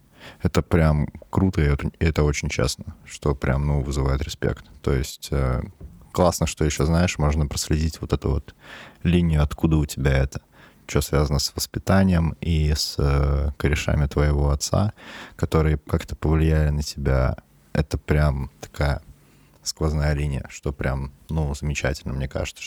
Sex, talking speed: male, 145 wpm